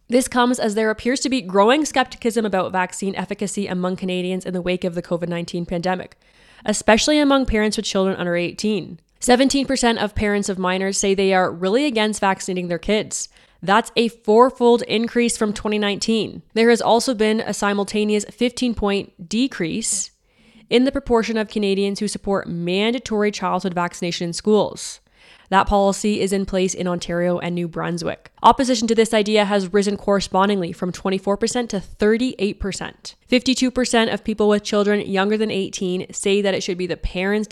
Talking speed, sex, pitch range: 165 wpm, female, 185-225 Hz